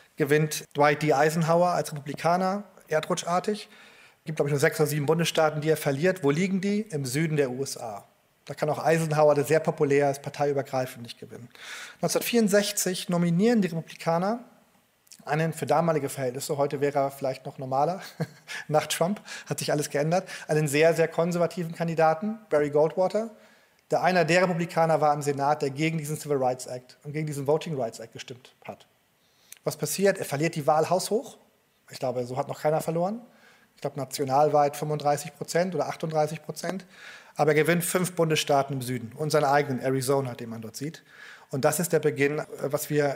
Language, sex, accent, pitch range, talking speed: German, male, German, 145-175 Hz, 180 wpm